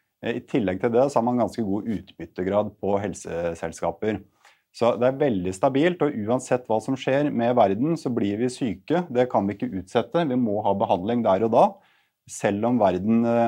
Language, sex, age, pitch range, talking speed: English, male, 30-49, 100-125 Hz, 190 wpm